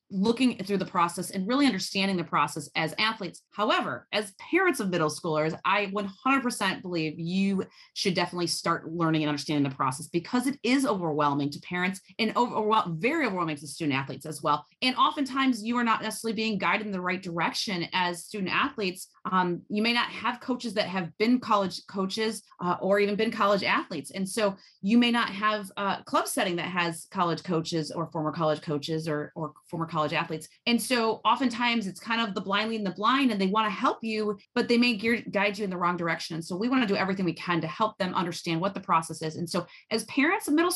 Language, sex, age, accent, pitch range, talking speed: English, female, 30-49, American, 170-225 Hz, 210 wpm